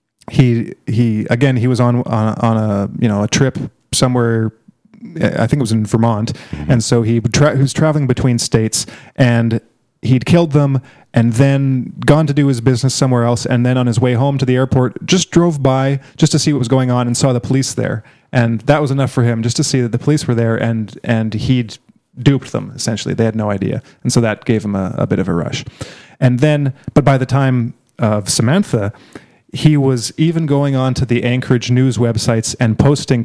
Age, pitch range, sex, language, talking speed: 30-49, 115-140 Hz, male, English, 215 wpm